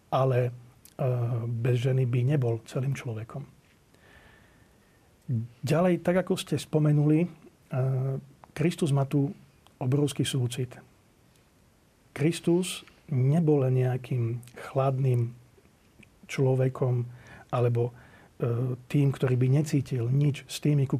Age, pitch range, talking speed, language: 40-59, 125-145 Hz, 90 wpm, Slovak